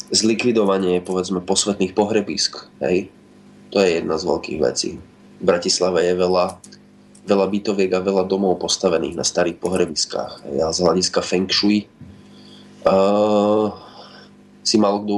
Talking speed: 135 wpm